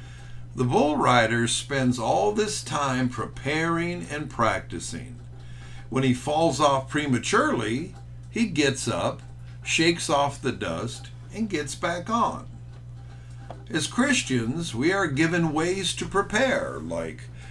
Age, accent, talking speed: 60-79, American, 120 wpm